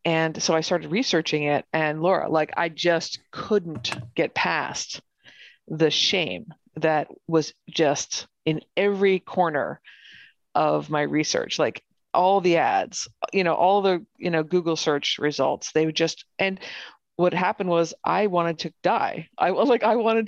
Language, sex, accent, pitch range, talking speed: English, female, American, 160-200 Hz, 160 wpm